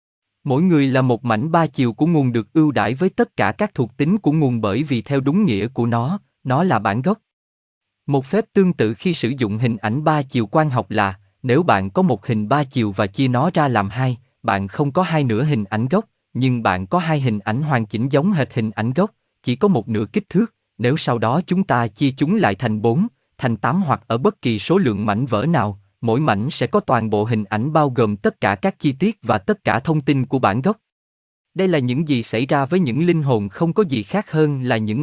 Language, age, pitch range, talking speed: Vietnamese, 20-39, 110-160 Hz, 250 wpm